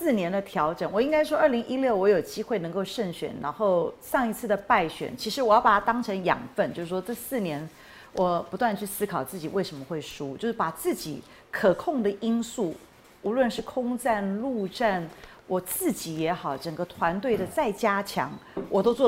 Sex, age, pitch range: female, 40-59, 170-225 Hz